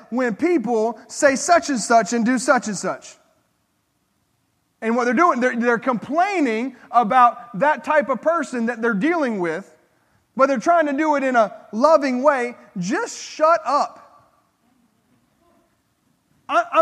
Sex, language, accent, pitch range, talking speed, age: male, English, American, 265-360 Hz, 145 wpm, 30-49